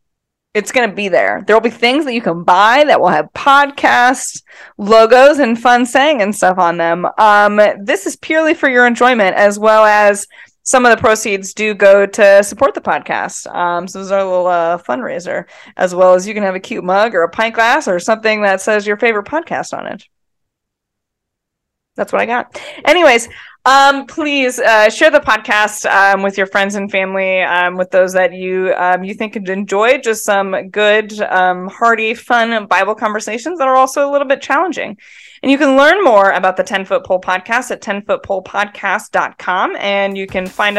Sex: female